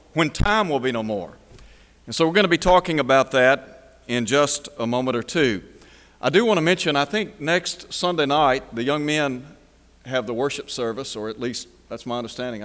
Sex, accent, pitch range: male, American, 100-150 Hz